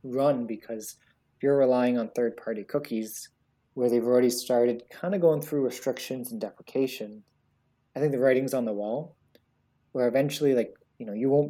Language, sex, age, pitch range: English, male, 20-39, 110-135 Hz